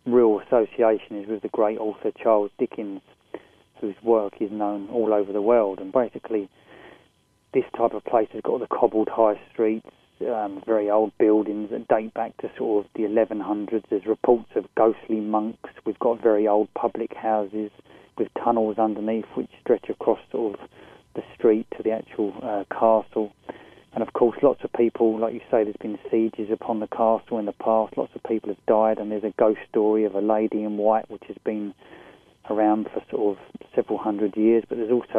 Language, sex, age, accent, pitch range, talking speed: English, male, 20-39, British, 105-115 Hz, 195 wpm